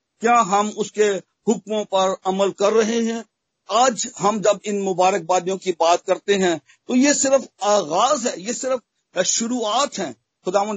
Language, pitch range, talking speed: Hindi, 185-230 Hz, 155 wpm